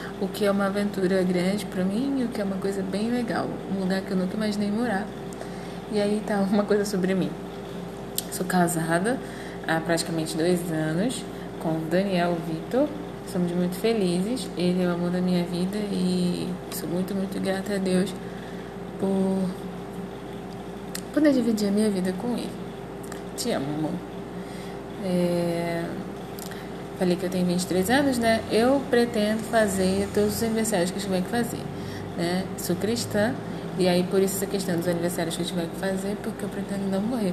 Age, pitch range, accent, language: 20-39, 185-205 Hz, Brazilian, Portuguese